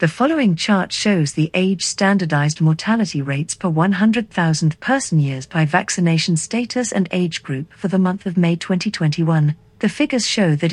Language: English